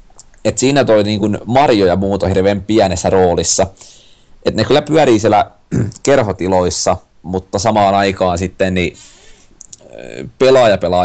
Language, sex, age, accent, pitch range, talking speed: Finnish, male, 30-49, native, 95-110 Hz, 125 wpm